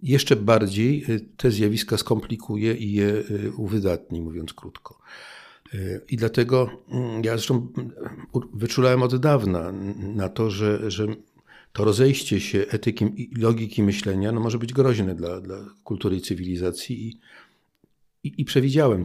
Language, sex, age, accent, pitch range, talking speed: Polish, male, 50-69, native, 100-120 Hz, 125 wpm